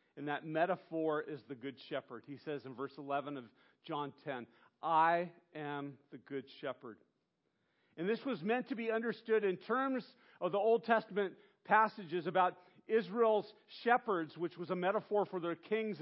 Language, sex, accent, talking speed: English, male, American, 165 wpm